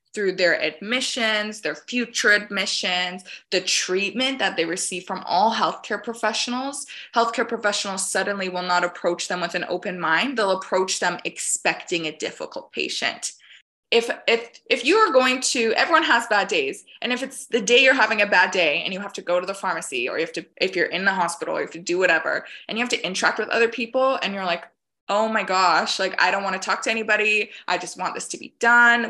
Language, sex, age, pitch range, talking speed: English, female, 20-39, 180-235 Hz, 215 wpm